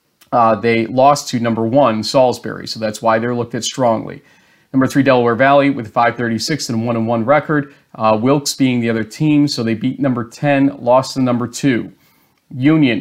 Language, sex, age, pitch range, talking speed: English, male, 40-59, 120-145 Hz, 190 wpm